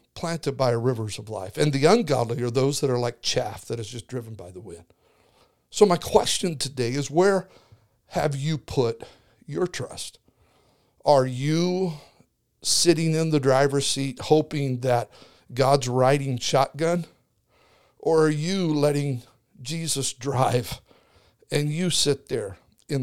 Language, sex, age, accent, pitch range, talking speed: English, male, 50-69, American, 120-150 Hz, 145 wpm